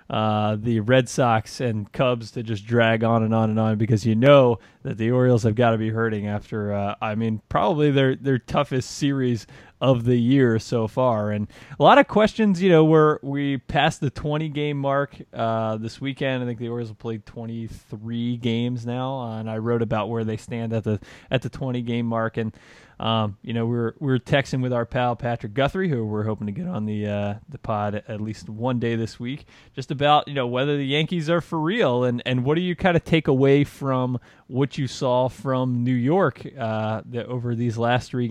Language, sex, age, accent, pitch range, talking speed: English, male, 20-39, American, 115-140 Hz, 225 wpm